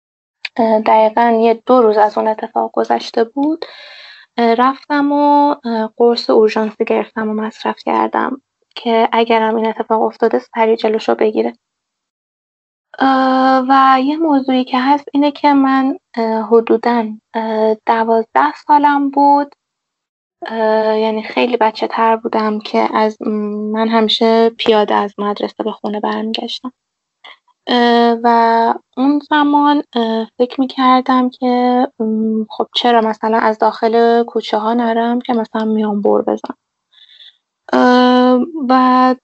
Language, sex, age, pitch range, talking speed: Persian, female, 20-39, 220-260 Hz, 115 wpm